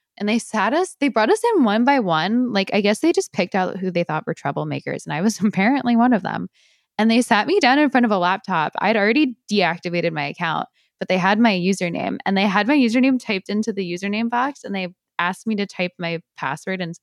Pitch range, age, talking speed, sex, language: 170-235 Hz, 10-29, 245 wpm, female, English